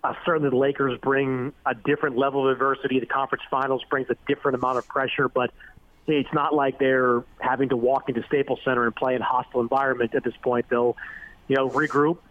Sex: male